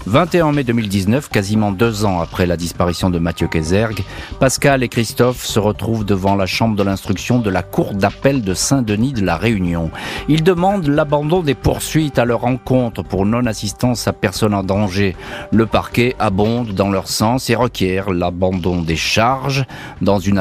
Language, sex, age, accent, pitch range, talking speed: French, male, 50-69, French, 95-125 Hz, 170 wpm